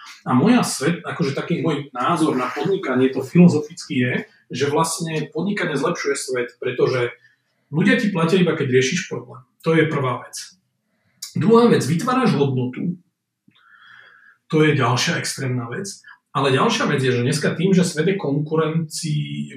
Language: Slovak